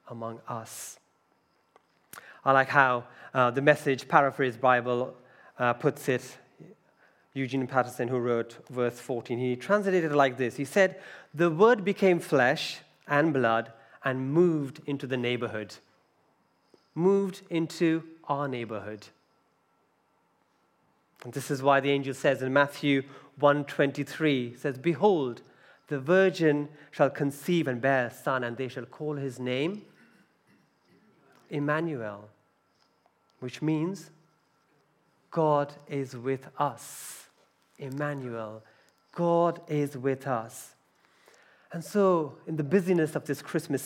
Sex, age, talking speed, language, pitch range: male, 30-49, 120 wpm, English, 125-160 Hz